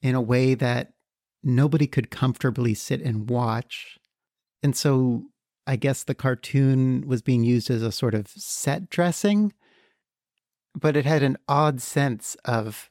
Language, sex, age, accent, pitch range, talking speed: English, male, 40-59, American, 120-140 Hz, 150 wpm